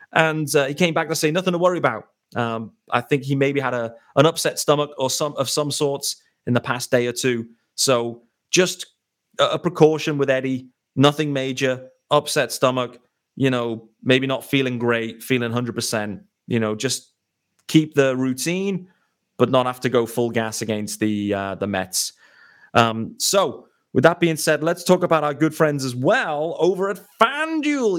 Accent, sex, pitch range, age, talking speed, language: British, male, 120-165 Hz, 30-49, 185 wpm, English